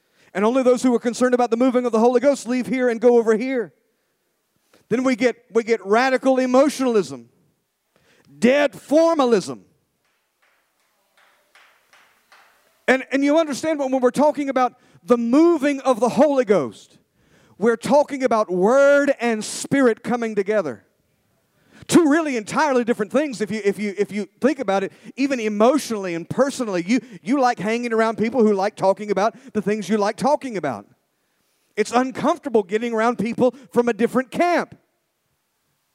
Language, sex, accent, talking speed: English, male, American, 155 wpm